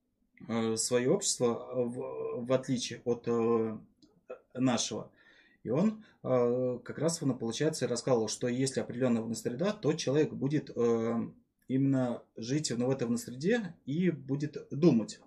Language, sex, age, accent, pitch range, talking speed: Russian, male, 20-39, native, 115-150 Hz, 140 wpm